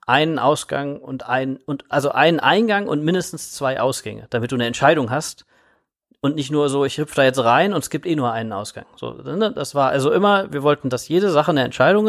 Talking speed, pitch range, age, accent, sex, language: 230 wpm, 130-155 Hz, 40-59, German, male, German